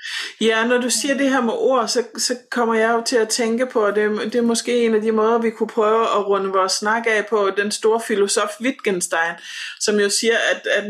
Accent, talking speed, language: native, 240 wpm, Danish